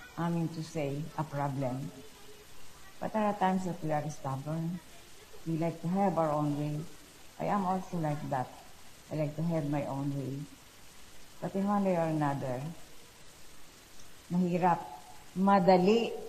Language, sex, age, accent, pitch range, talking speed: Filipino, female, 50-69, native, 140-180 Hz, 150 wpm